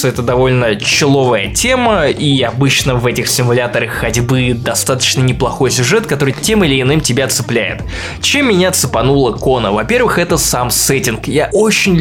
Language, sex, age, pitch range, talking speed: Russian, male, 20-39, 120-145 Hz, 145 wpm